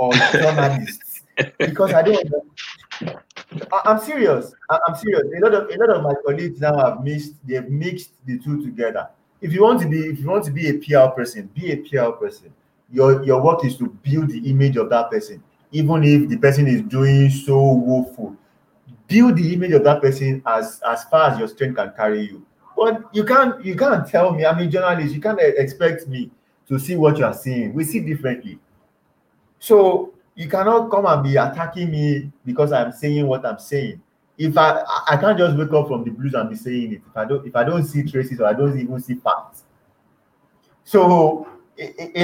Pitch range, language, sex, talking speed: 130-180 Hz, English, male, 200 wpm